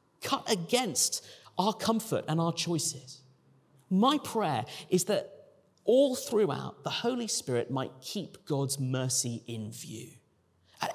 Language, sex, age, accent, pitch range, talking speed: English, male, 40-59, British, 145-210 Hz, 125 wpm